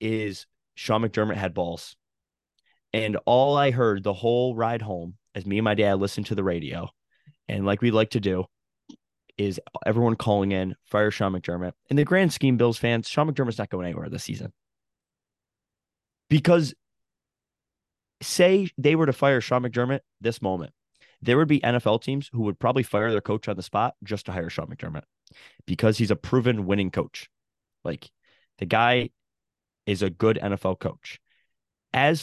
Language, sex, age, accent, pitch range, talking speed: English, male, 20-39, American, 100-125 Hz, 170 wpm